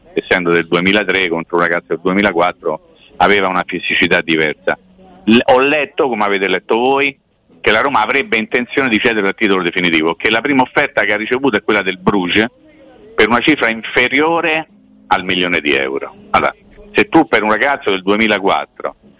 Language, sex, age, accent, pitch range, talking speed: Italian, male, 50-69, native, 100-135 Hz, 175 wpm